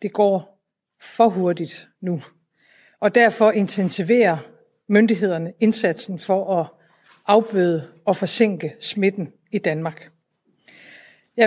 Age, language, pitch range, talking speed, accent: 50-69, Danish, 190-225 Hz, 100 wpm, native